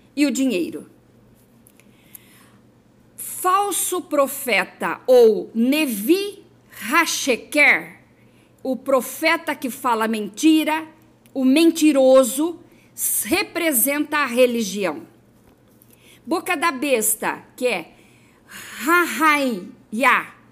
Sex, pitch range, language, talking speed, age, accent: female, 245-325 Hz, Portuguese, 70 wpm, 50-69, Brazilian